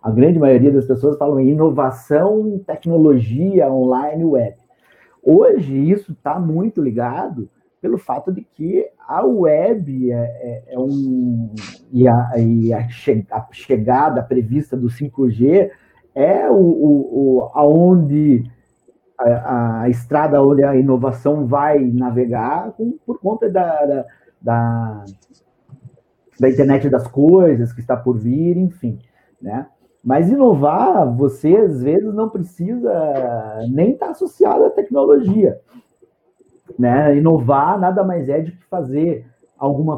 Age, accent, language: 50-69, Brazilian, Portuguese